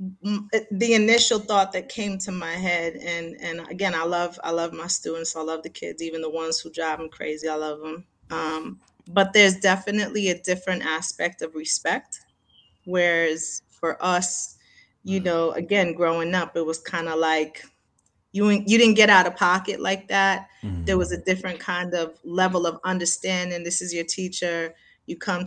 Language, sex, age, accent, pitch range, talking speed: English, female, 30-49, American, 170-200 Hz, 180 wpm